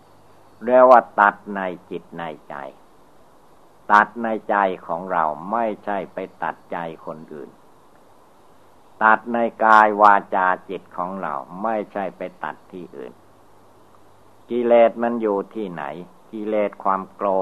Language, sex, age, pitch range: Thai, male, 60-79, 90-110 Hz